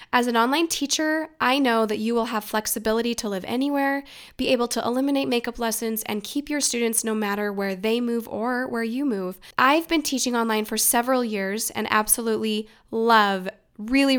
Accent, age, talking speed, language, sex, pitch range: American, 10-29, 185 wpm, English, female, 220-275 Hz